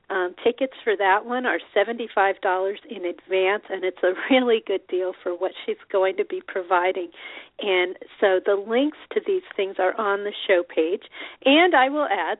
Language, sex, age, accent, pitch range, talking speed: English, female, 40-59, American, 190-265 Hz, 185 wpm